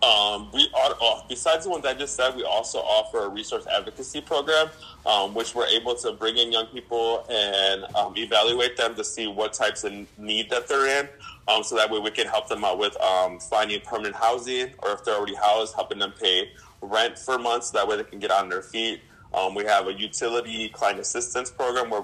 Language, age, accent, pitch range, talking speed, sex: English, 20-39, American, 105-130 Hz, 225 wpm, male